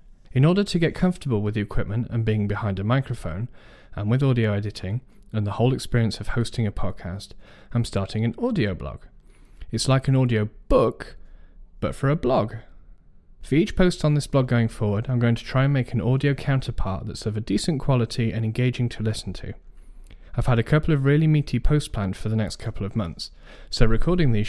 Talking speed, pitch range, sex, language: 205 wpm, 105-130 Hz, male, English